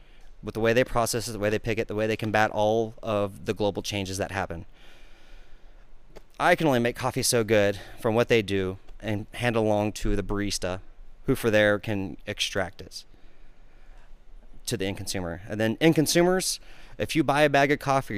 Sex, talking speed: male, 200 wpm